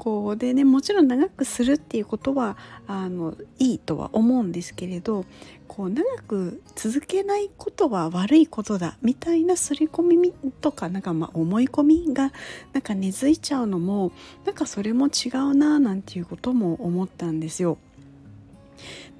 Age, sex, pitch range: 40-59, female, 185-290 Hz